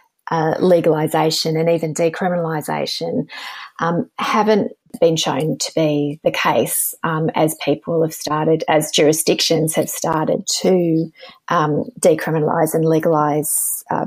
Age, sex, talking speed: 30-49, female, 120 wpm